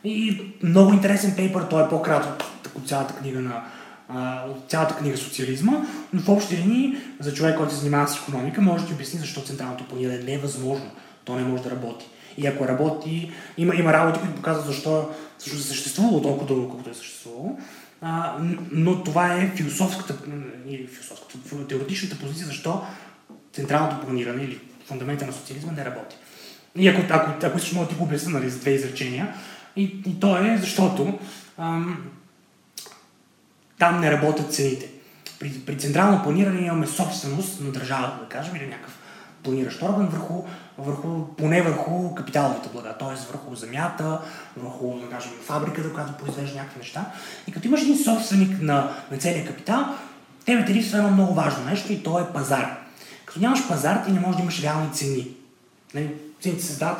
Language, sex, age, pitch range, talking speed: Bulgarian, male, 20-39, 135-180 Hz, 165 wpm